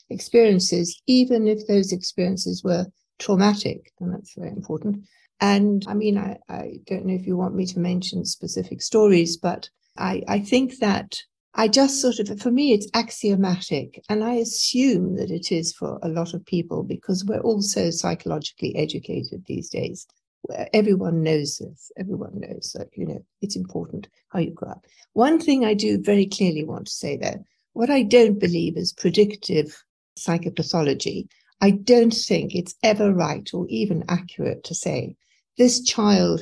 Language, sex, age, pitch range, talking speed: English, female, 60-79, 170-210 Hz, 170 wpm